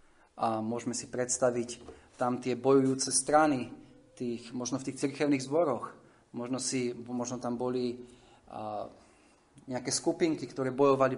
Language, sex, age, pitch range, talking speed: Slovak, male, 30-49, 120-145 Hz, 130 wpm